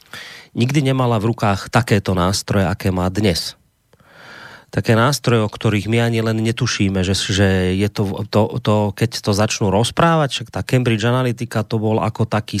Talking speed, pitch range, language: 165 wpm, 105-120 Hz, Slovak